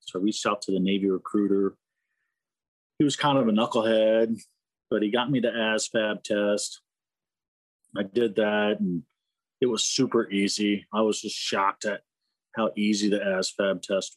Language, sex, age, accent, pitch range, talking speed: English, male, 40-59, American, 90-115 Hz, 165 wpm